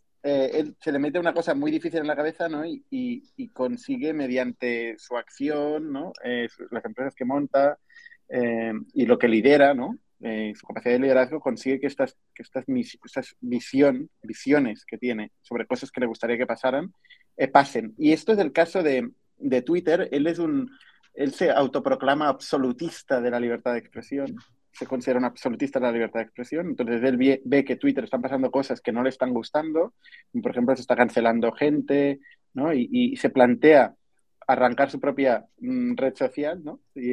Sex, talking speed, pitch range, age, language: male, 190 wpm, 125-170 Hz, 30-49, Spanish